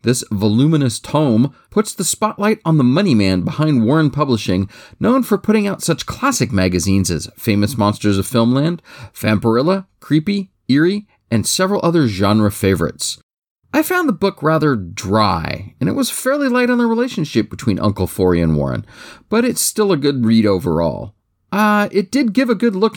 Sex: male